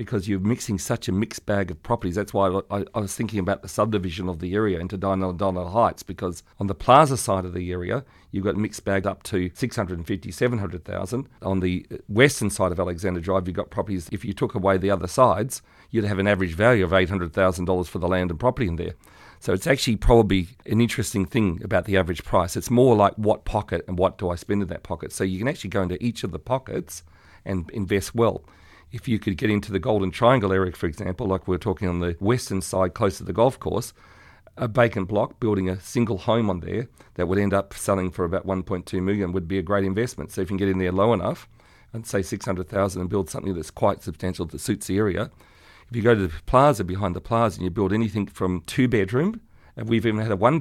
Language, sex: English, male